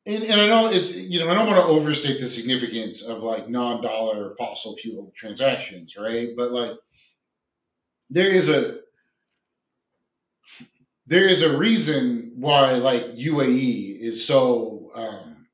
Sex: male